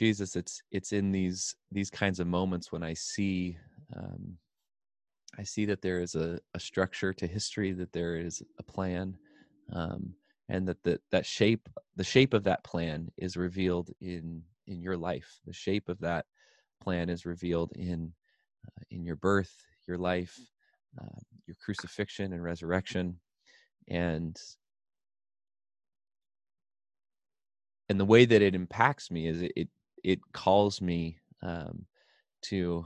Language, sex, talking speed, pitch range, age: English, male, 145 wpm, 85-100 Hz, 20-39